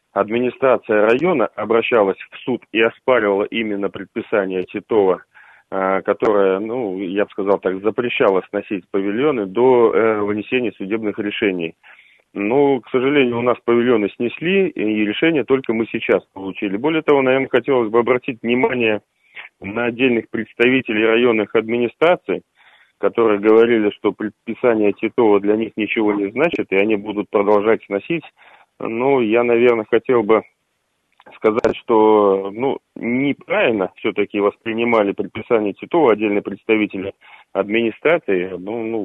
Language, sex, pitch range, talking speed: Russian, male, 100-120 Hz, 125 wpm